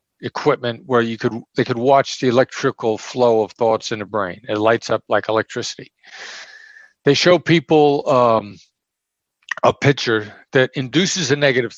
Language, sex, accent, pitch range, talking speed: English, male, American, 115-150 Hz, 155 wpm